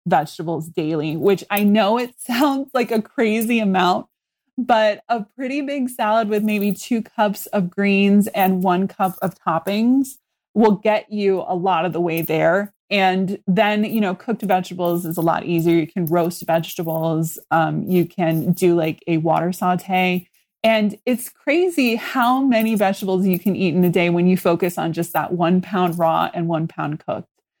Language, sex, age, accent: English, female, 20-39, American